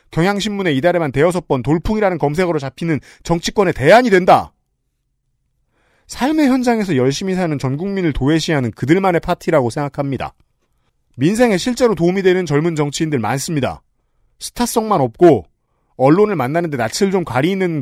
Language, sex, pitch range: Korean, male, 140-210 Hz